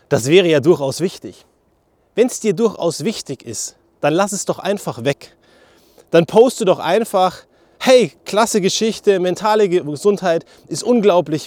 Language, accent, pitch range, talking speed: German, German, 155-215 Hz, 145 wpm